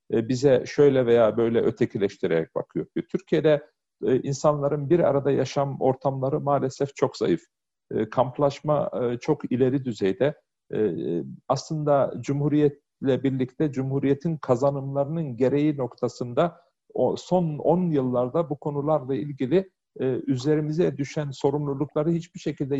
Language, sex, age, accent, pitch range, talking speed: Turkish, male, 50-69, native, 130-165 Hz, 115 wpm